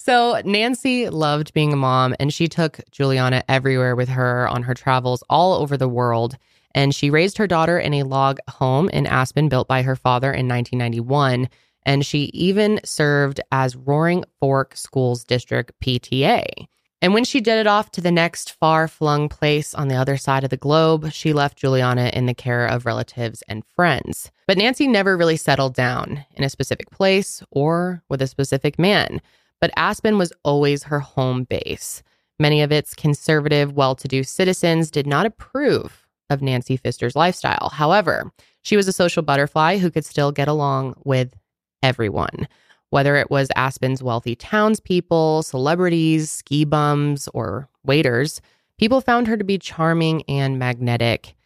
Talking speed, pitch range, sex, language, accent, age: 165 wpm, 130-165 Hz, female, English, American, 20-39